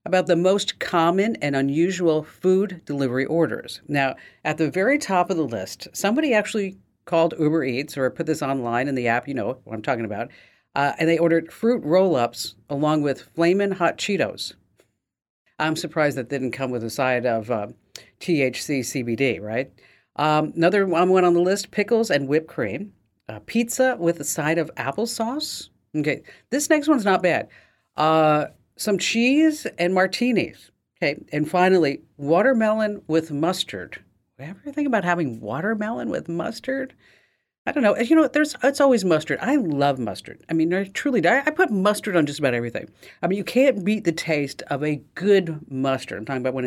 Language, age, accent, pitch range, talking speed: English, 50-69, American, 135-195 Hz, 175 wpm